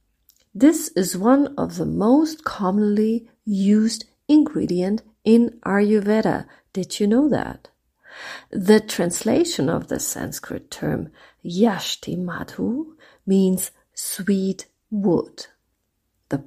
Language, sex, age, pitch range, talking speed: English, female, 40-59, 180-240 Hz, 100 wpm